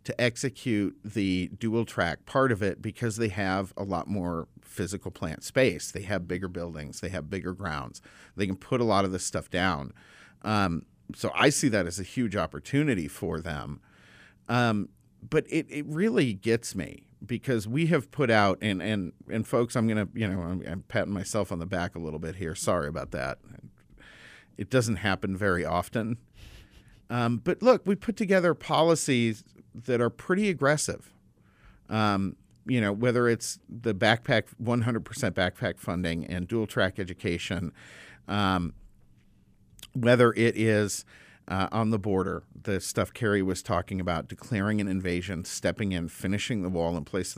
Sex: male